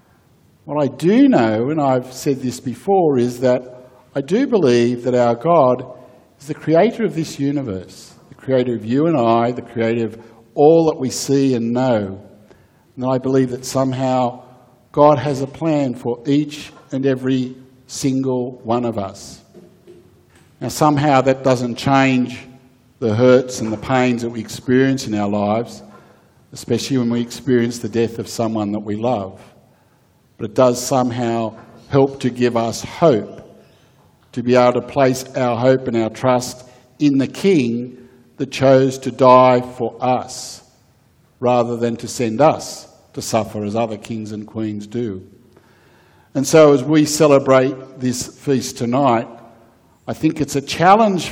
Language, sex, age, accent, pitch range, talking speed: English, male, 50-69, Australian, 115-140 Hz, 160 wpm